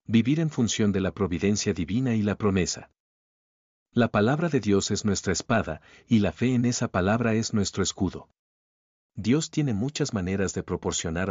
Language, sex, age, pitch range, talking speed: Spanish, male, 50-69, 95-120 Hz, 170 wpm